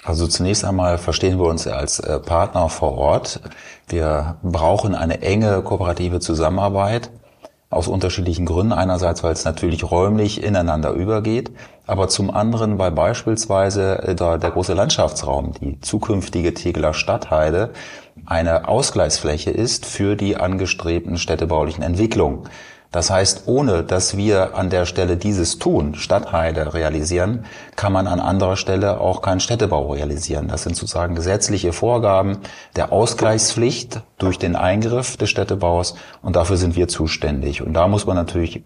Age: 30-49